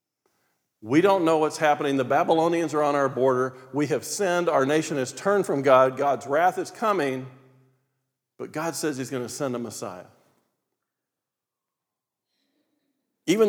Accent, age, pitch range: American, 50-69, 140-200 Hz